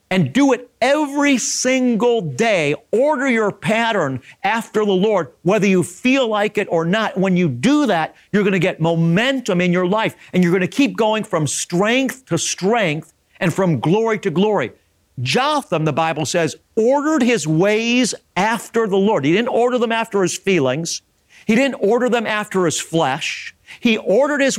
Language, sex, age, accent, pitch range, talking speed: English, male, 50-69, American, 165-220 Hz, 175 wpm